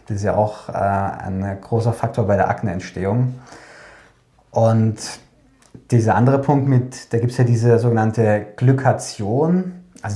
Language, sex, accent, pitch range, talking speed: German, male, German, 105-125 Hz, 135 wpm